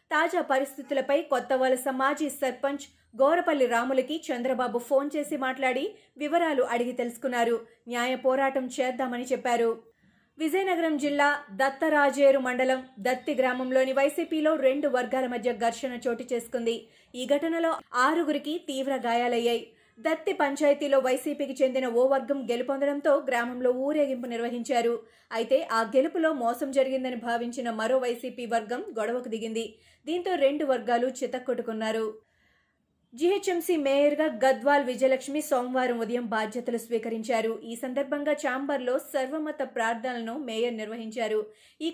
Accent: native